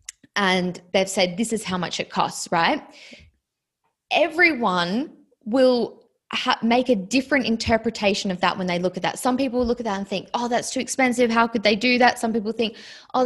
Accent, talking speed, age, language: Australian, 195 wpm, 20-39, English